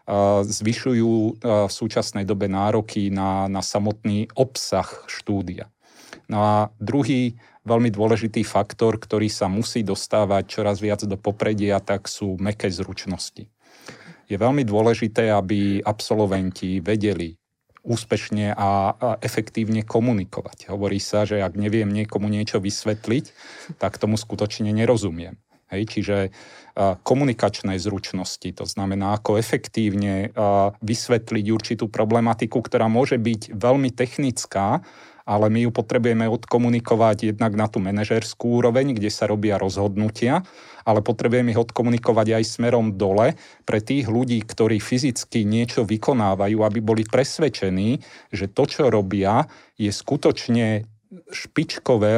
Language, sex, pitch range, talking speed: Slovak, male, 105-120 Hz, 120 wpm